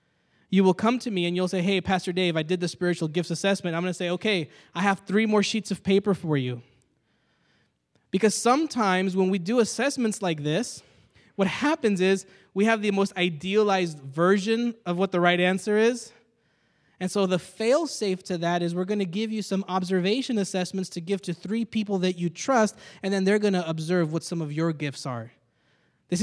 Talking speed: 205 wpm